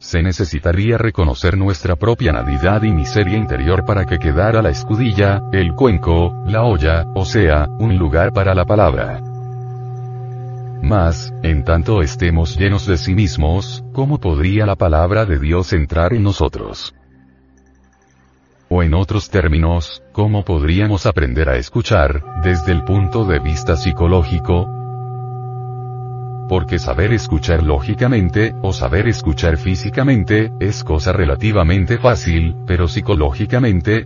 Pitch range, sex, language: 80-110 Hz, male, Spanish